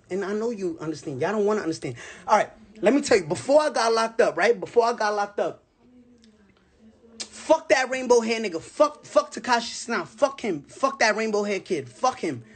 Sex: male